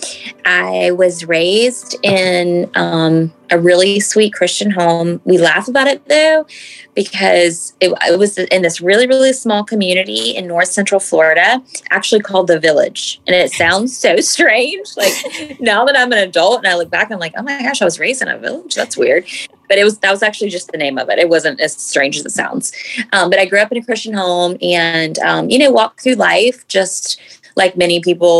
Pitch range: 175-230 Hz